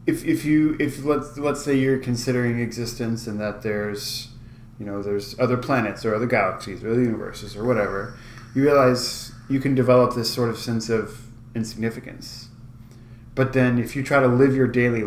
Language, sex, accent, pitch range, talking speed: English, male, American, 115-130 Hz, 185 wpm